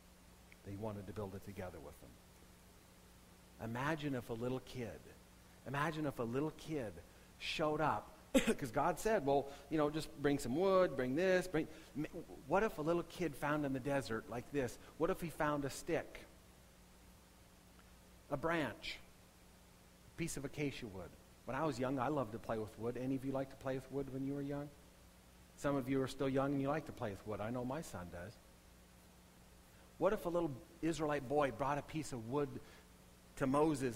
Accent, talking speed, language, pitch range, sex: American, 195 wpm, English, 100-160 Hz, male